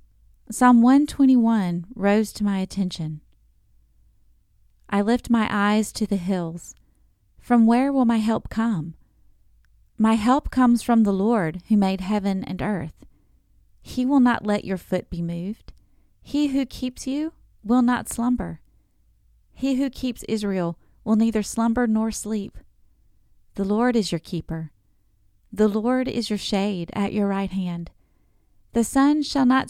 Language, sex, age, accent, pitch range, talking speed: English, female, 30-49, American, 180-240 Hz, 145 wpm